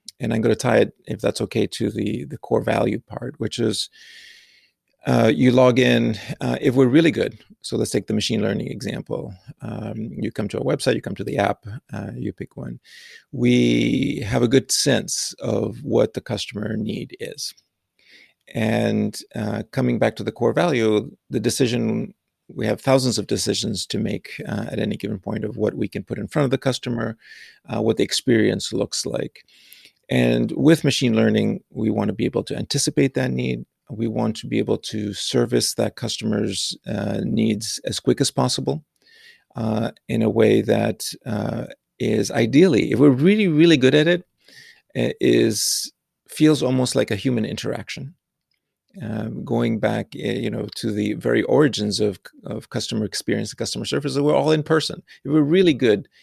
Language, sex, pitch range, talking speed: English, male, 105-145 Hz, 180 wpm